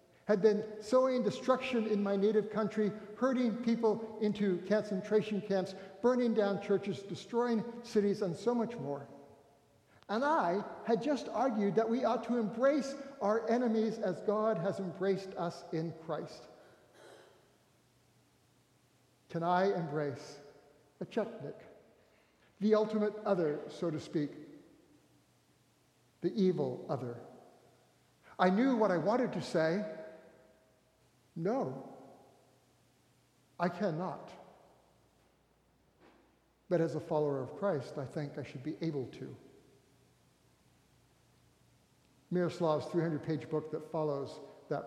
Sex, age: male, 60-79